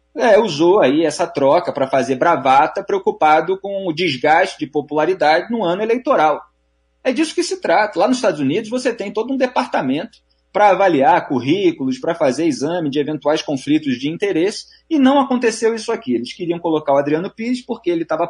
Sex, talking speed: male, 180 wpm